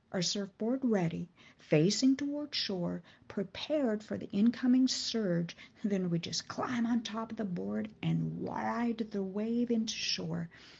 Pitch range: 175-235 Hz